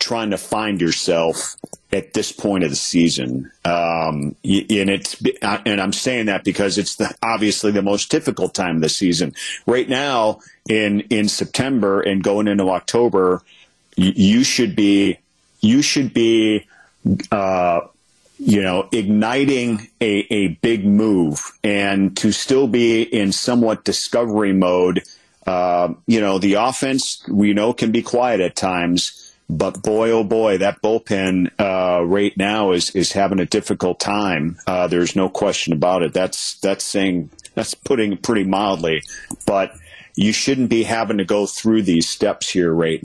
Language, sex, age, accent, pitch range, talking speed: English, male, 40-59, American, 90-110 Hz, 155 wpm